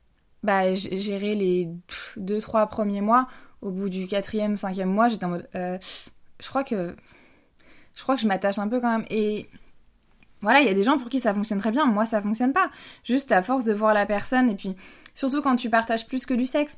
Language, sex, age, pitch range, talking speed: French, female, 20-39, 195-245 Hz, 230 wpm